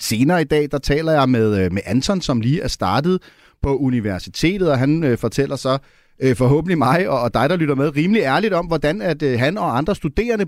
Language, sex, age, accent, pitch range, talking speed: Danish, male, 30-49, native, 125-165 Hz, 225 wpm